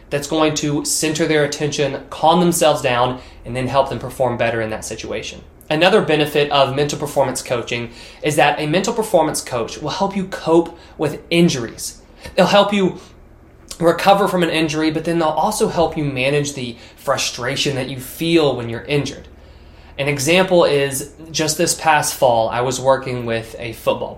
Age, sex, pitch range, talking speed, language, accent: 20-39, male, 125-160 Hz, 175 wpm, English, American